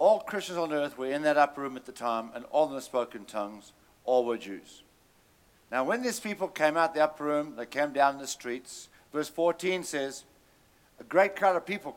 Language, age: English, 60-79